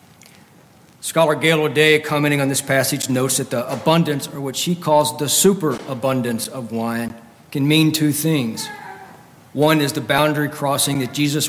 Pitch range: 125-150 Hz